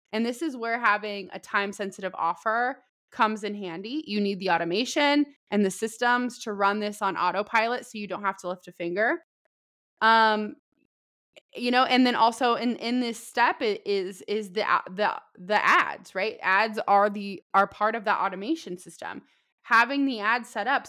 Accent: American